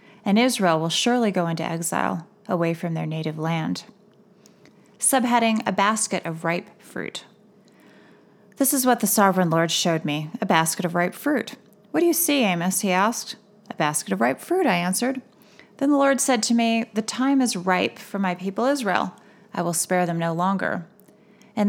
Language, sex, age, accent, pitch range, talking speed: English, female, 30-49, American, 175-215 Hz, 185 wpm